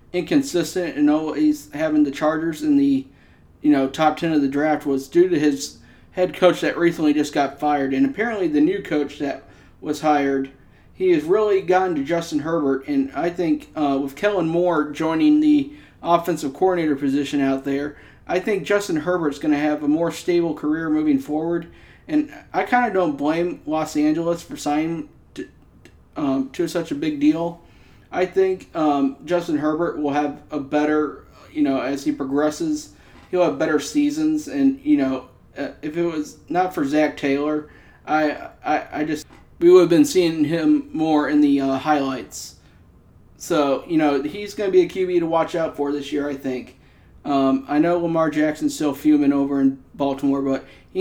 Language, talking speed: English, 185 wpm